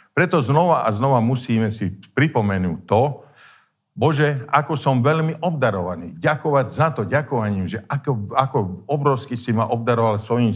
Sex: male